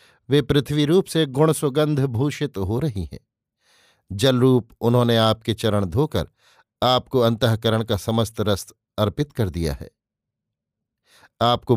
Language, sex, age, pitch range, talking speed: Hindi, male, 50-69, 110-135 Hz, 140 wpm